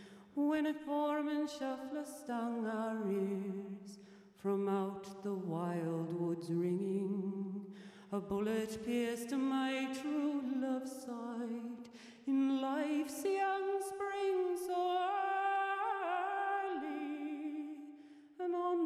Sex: female